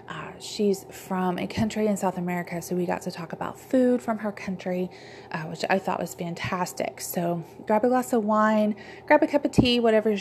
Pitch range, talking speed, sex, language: 180-225 Hz, 210 wpm, female, English